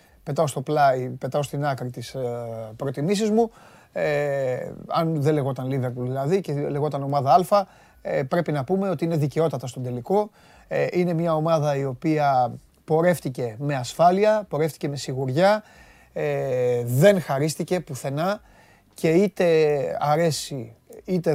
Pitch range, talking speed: 135-165 Hz, 140 wpm